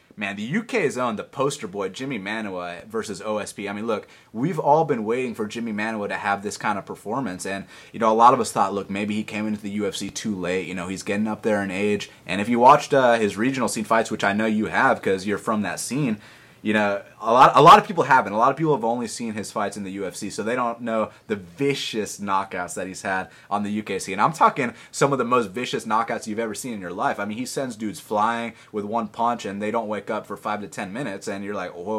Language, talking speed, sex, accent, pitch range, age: English, 265 wpm, male, American, 100-120 Hz, 30-49